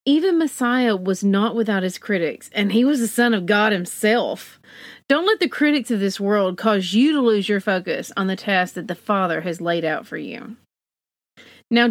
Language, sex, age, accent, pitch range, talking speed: English, female, 40-59, American, 190-255 Hz, 200 wpm